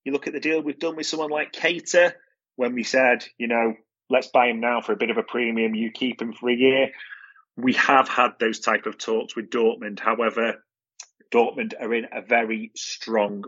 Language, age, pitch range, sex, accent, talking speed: English, 30-49, 110-165 Hz, male, British, 215 wpm